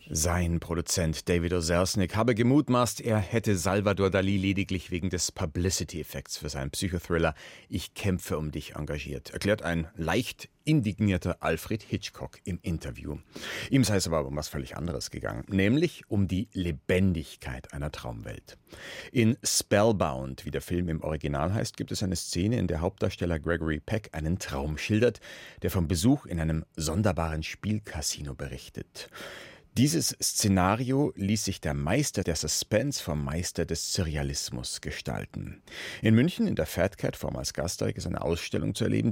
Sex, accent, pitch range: male, German, 80-105 Hz